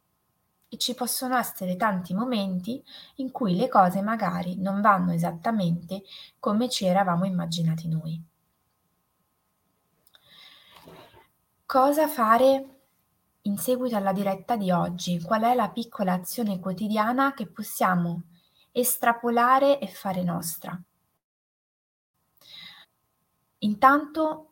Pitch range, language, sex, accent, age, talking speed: 180-245 Hz, Italian, female, native, 20-39, 95 wpm